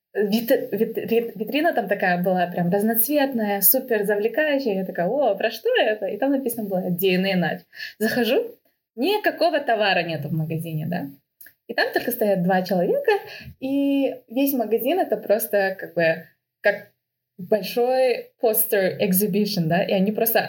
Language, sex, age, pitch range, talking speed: Russian, female, 20-39, 180-240 Hz, 140 wpm